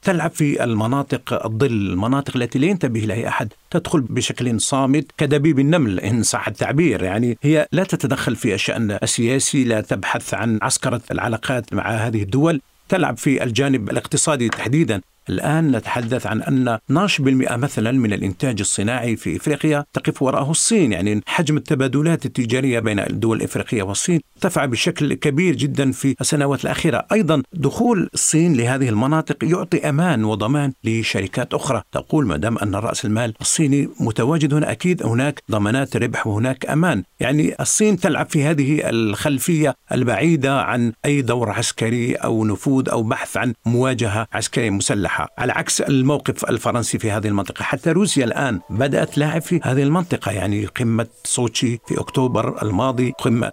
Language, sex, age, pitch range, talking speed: Arabic, male, 50-69, 115-150 Hz, 150 wpm